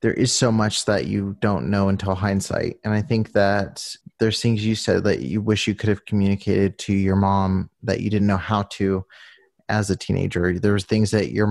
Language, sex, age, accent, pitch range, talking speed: English, male, 30-49, American, 100-115 Hz, 215 wpm